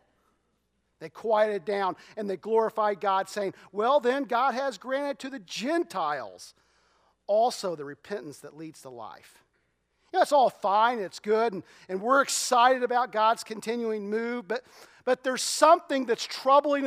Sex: male